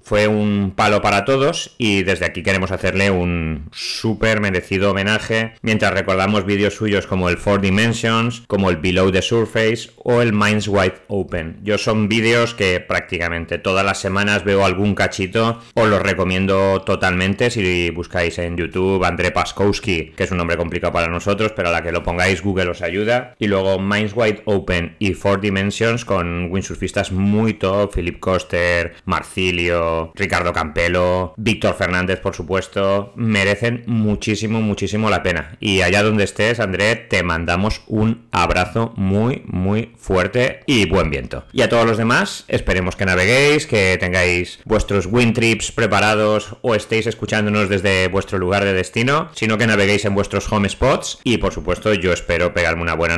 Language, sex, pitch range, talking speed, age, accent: Spanish, male, 90-110 Hz, 165 wpm, 30-49, Spanish